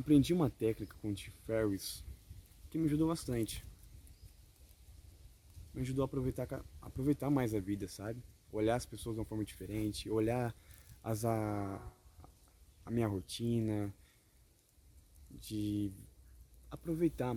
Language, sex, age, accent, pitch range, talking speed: Portuguese, male, 20-39, Brazilian, 95-120 Hz, 120 wpm